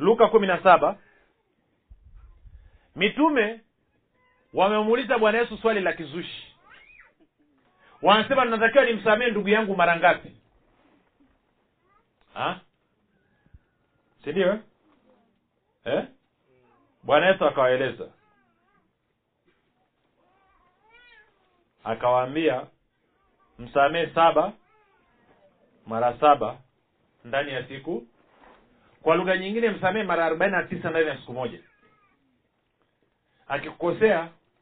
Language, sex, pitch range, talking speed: Swahili, male, 140-215 Hz, 70 wpm